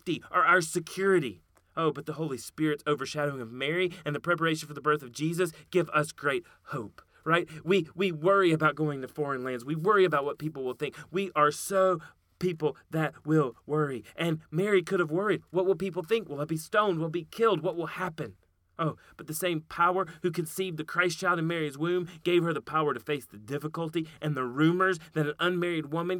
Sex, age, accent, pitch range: male, 30-49, American, 145-175 Hz